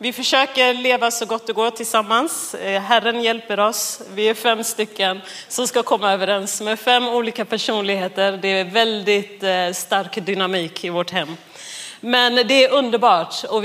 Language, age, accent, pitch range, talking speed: Swedish, 30-49, native, 195-235 Hz, 160 wpm